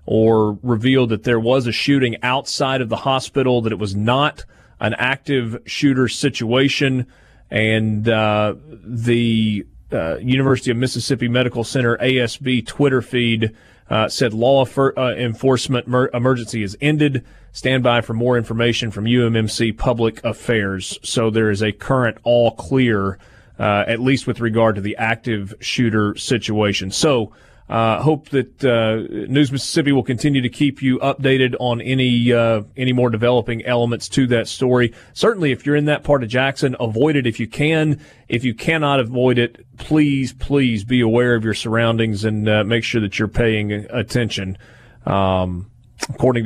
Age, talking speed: 30-49, 160 wpm